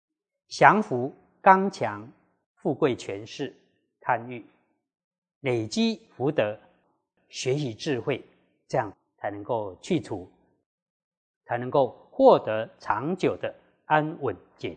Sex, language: male, Chinese